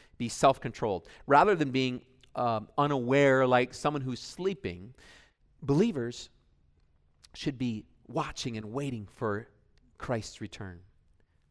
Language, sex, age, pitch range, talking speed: English, male, 40-59, 105-155 Hz, 105 wpm